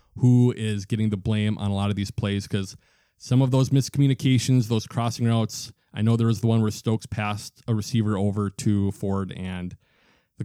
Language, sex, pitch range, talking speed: English, male, 105-125 Hz, 200 wpm